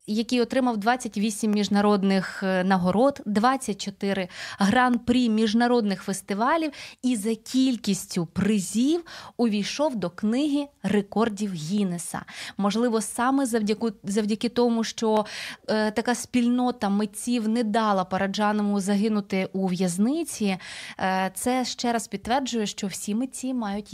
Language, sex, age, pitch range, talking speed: Ukrainian, female, 20-39, 200-250 Hz, 110 wpm